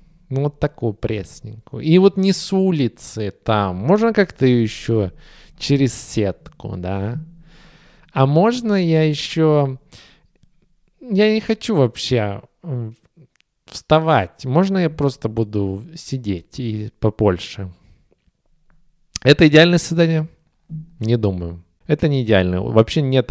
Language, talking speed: Russian, 110 wpm